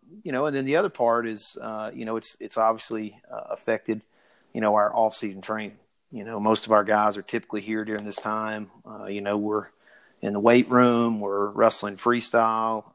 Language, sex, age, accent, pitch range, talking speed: English, male, 30-49, American, 105-110 Hz, 205 wpm